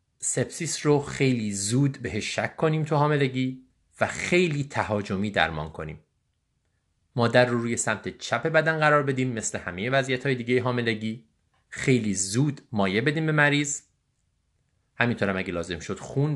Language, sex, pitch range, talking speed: Persian, male, 100-145 Hz, 145 wpm